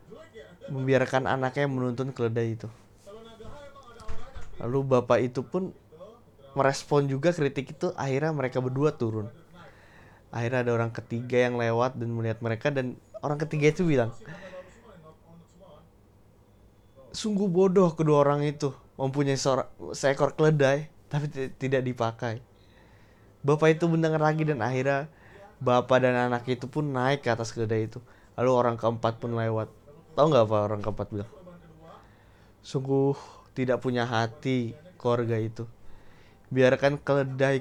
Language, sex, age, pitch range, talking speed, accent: Indonesian, male, 20-39, 110-155 Hz, 125 wpm, native